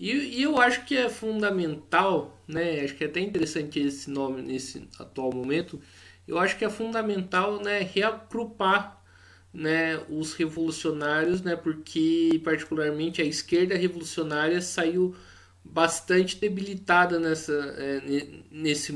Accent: Brazilian